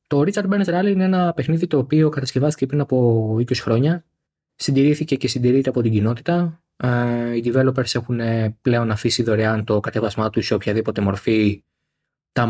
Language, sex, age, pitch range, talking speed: Greek, male, 20-39, 110-135 Hz, 160 wpm